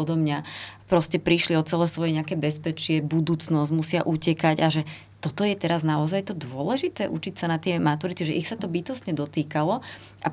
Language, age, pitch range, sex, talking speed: Slovak, 20-39, 155-175 Hz, female, 185 wpm